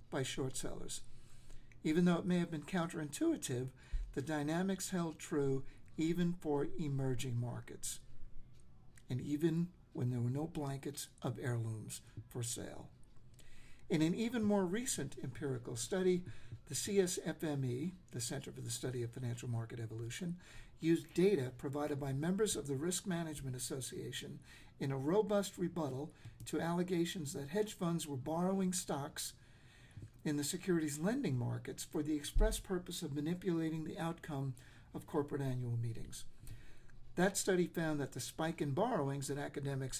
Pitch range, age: 130-175 Hz, 60-79